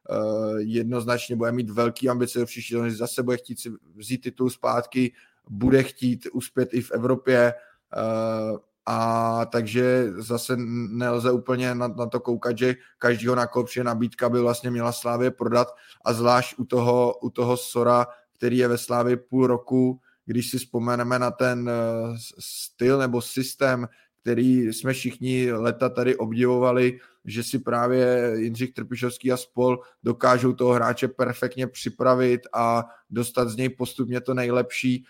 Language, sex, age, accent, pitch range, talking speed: Czech, male, 20-39, native, 115-125 Hz, 145 wpm